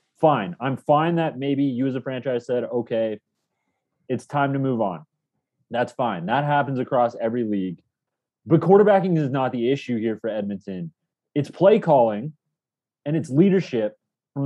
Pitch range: 130-180 Hz